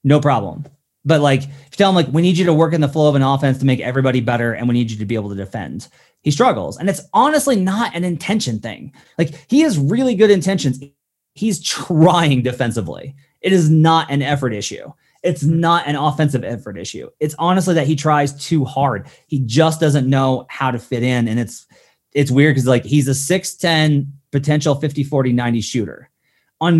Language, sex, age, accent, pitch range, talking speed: English, male, 30-49, American, 125-160 Hz, 205 wpm